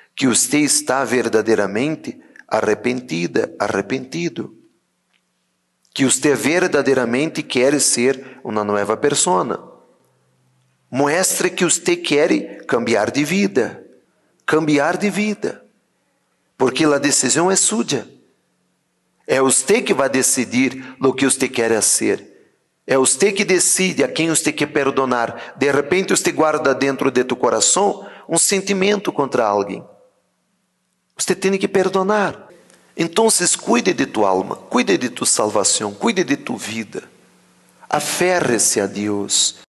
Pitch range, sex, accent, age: 125-180 Hz, male, Brazilian, 40-59